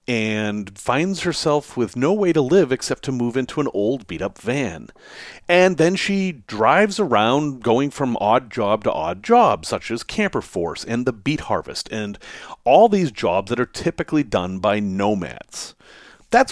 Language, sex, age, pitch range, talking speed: English, male, 40-59, 115-195 Hz, 170 wpm